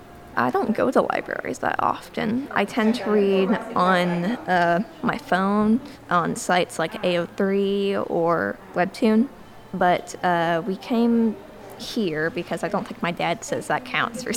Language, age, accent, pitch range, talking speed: English, 20-39, American, 175-225 Hz, 150 wpm